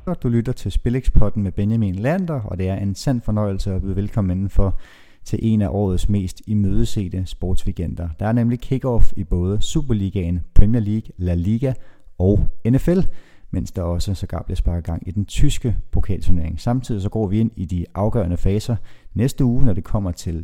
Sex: male